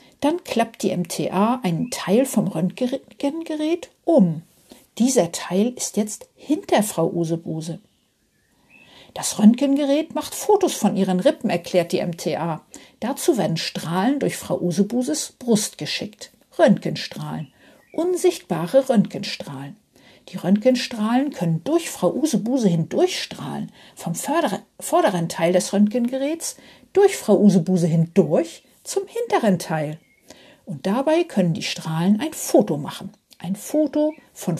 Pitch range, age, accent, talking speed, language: 180-270 Hz, 50-69, German, 115 wpm, German